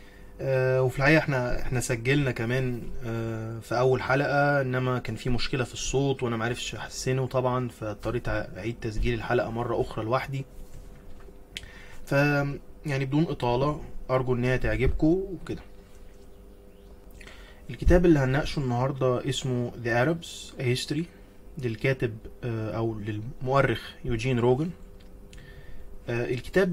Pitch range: 110-130 Hz